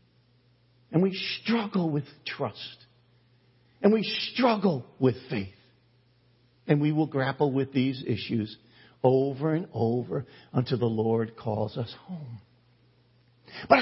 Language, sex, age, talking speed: English, male, 50-69, 115 wpm